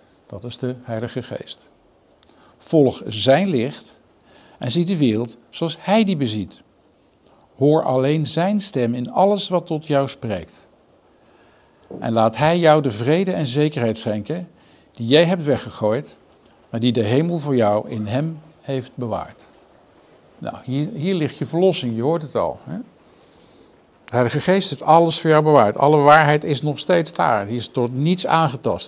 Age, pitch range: 60-79, 120-160 Hz